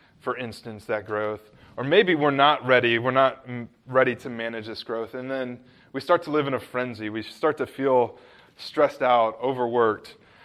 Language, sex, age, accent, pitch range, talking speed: English, male, 20-39, American, 110-135 Hz, 185 wpm